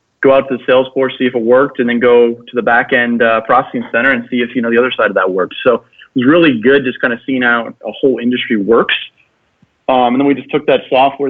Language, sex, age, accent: English, male, 30-49, American